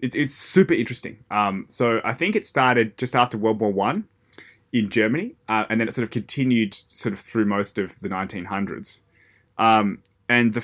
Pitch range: 100-125 Hz